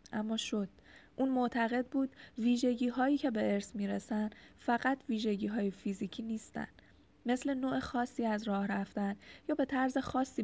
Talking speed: 140 wpm